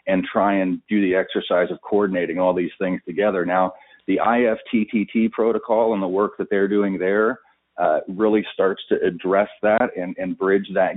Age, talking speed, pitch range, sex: 40-59, 180 wpm, 95-105 Hz, male